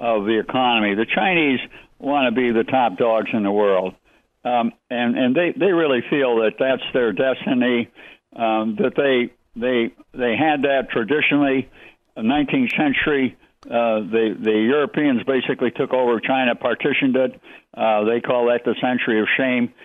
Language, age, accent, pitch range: English, 60-79, American, 115-140 Hz